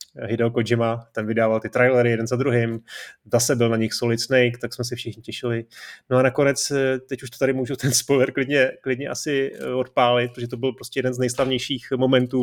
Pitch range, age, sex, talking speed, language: 120-140 Hz, 30-49, male, 205 wpm, Czech